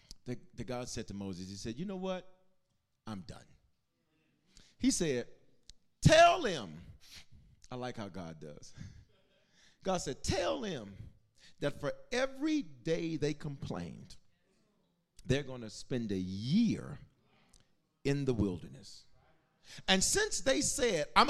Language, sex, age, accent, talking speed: English, male, 40-59, American, 125 wpm